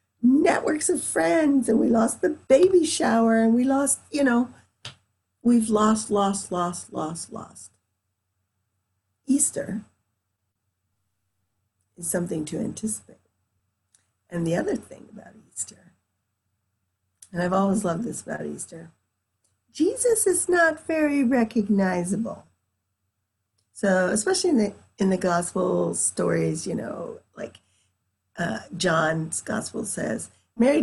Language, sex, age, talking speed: English, female, 50-69, 115 wpm